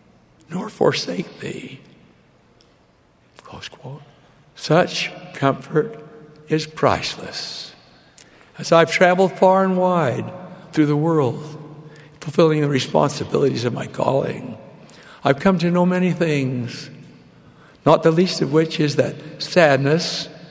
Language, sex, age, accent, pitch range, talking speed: English, male, 60-79, American, 135-160 Hz, 115 wpm